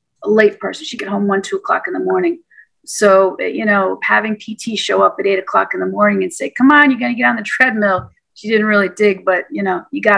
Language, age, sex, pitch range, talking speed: English, 40-59, female, 200-255 Hz, 270 wpm